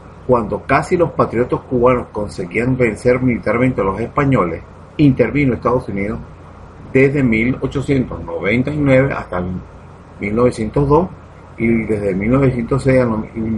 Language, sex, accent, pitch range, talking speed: Spanish, male, Venezuelan, 105-135 Hz, 95 wpm